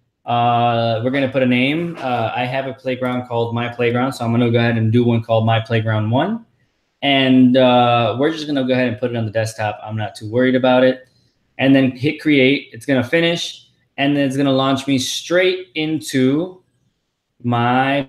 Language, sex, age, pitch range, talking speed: English, male, 20-39, 120-150 Hz, 220 wpm